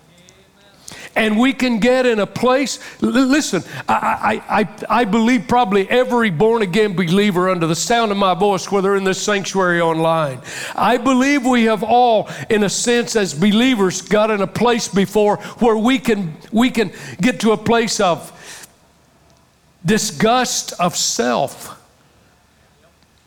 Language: English